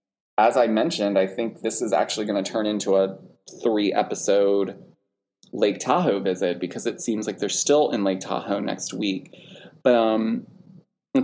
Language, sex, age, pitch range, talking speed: English, male, 20-39, 95-135 Hz, 165 wpm